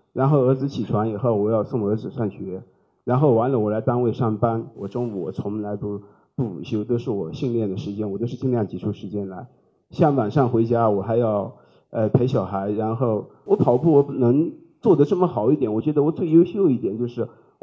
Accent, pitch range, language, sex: native, 115-150 Hz, Chinese, male